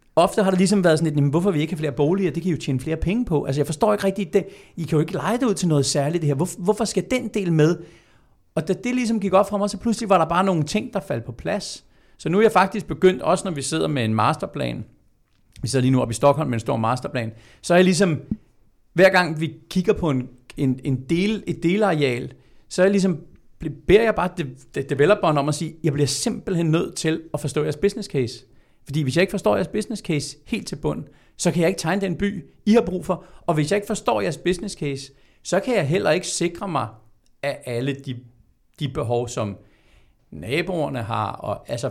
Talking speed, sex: 245 wpm, male